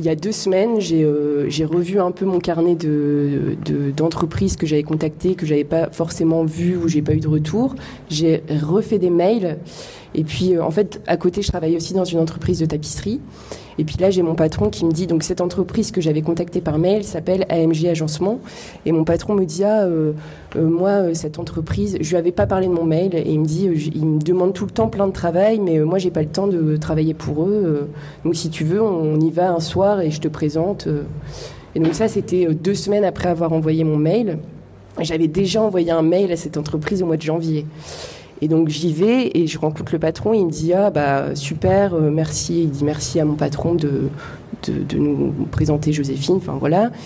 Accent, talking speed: French, 235 wpm